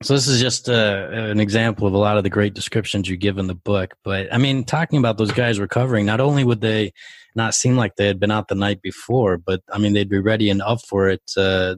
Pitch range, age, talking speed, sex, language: 95-110 Hz, 20-39, 265 wpm, male, English